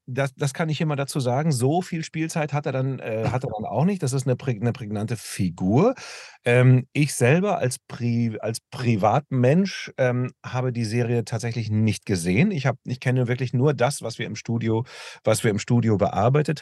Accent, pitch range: German, 110-140 Hz